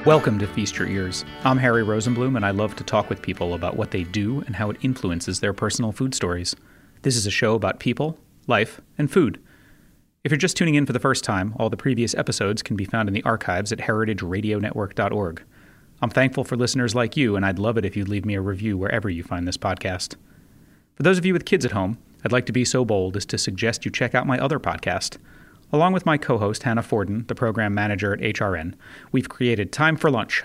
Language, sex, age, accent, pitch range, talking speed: English, male, 30-49, American, 100-130 Hz, 230 wpm